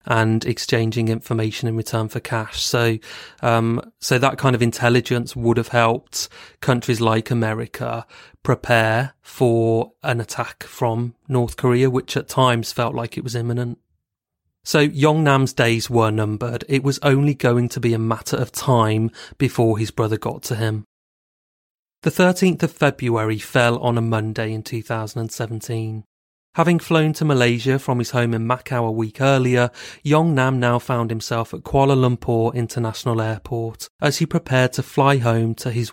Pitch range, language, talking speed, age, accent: 115-130 Hz, English, 160 wpm, 30-49, British